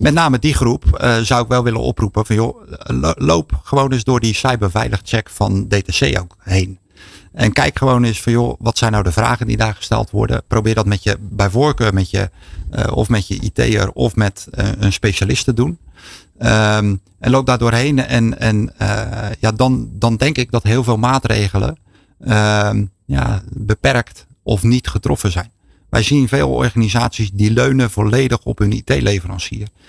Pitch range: 100-120 Hz